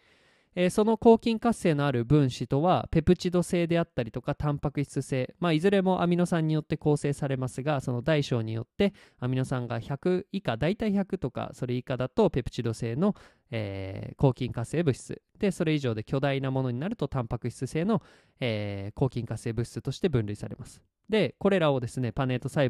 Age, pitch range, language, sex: 20-39, 120-170 Hz, Japanese, male